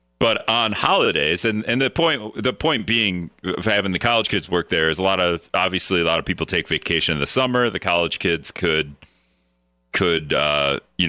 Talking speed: 205 wpm